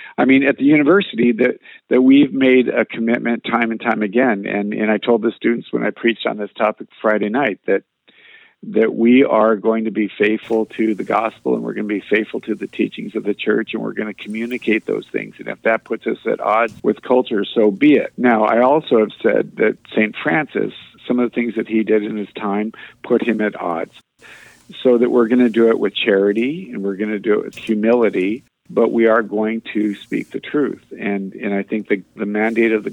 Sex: male